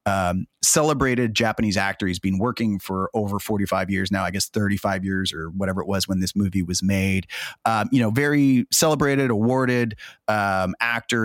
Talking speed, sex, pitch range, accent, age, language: 175 wpm, male, 100-135 Hz, American, 30-49, English